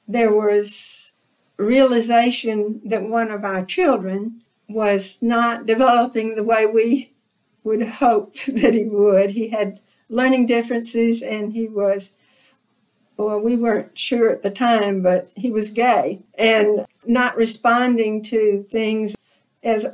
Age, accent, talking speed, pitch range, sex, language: 60-79, American, 130 wpm, 210-260 Hz, female, English